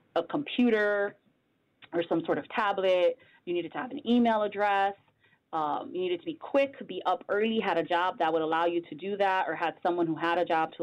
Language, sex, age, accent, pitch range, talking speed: English, female, 20-39, American, 160-200 Hz, 225 wpm